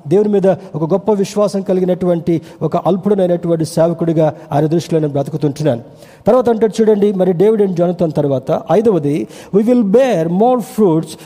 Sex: male